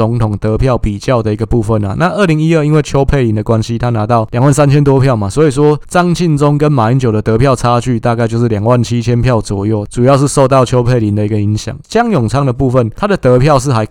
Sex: male